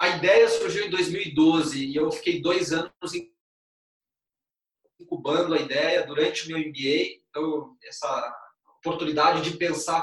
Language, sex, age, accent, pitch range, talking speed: Portuguese, male, 20-39, Brazilian, 155-195 Hz, 130 wpm